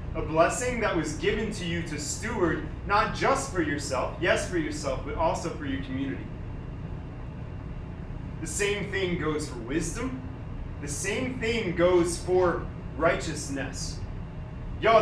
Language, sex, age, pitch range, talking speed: English, male, 30-49, 150-185 Hz, 135 wpm